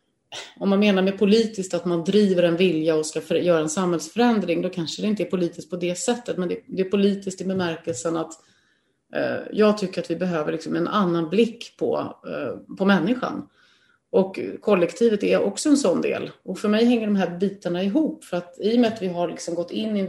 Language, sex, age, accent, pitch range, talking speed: Swedish, female, 30-49, native, 165-205 Hz, 210 wpm